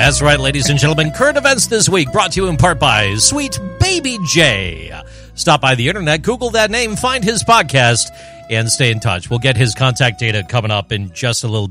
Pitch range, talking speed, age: 120-175 Hz, 220 wpm, 40-59